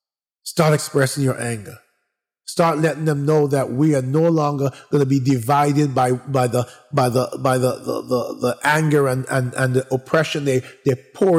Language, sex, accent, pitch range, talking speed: English, male, American, 125-155 Hz, 190 wpm